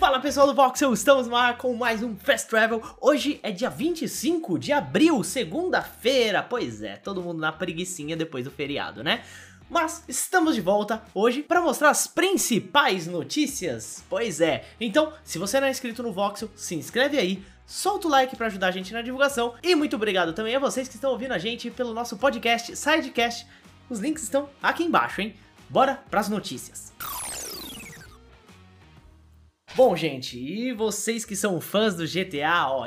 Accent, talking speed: Brazilian, 175 wpm